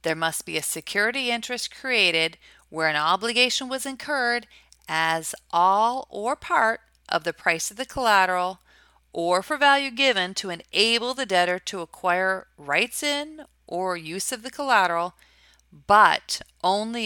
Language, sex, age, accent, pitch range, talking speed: English, female, 40-59, American, 160-225 Hz, 145 wpm